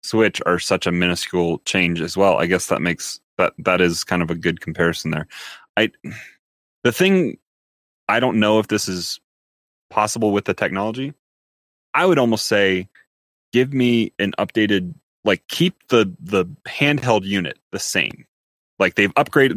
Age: 30-49